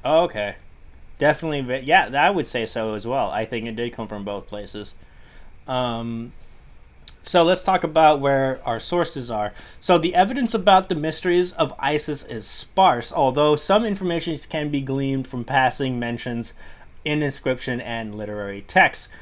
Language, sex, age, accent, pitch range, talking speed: English, male, 30-49, American, 115-160 Hz, 155 wpm